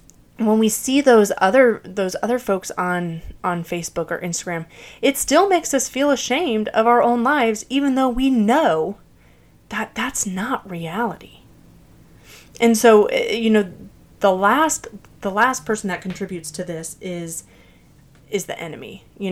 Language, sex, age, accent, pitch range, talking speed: English, female, 20-39, American, 170-230 Hz, 150 wpm